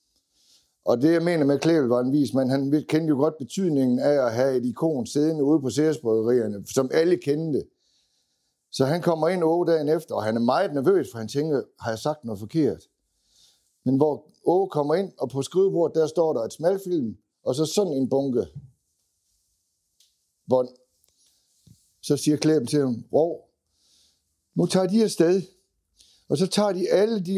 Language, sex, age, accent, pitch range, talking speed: Danish, male, 60-79, native, 120-170 Hz, 180 wpm